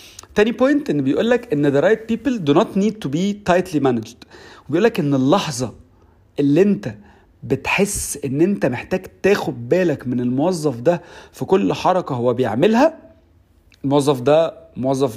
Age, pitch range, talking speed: 40-59, 135-195 Hz, 155 wpm